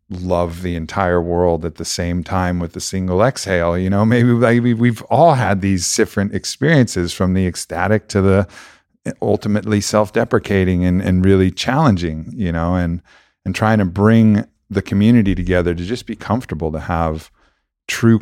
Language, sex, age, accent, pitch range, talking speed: English, male, 50-69, American, 85-100 Hz, 160 wpm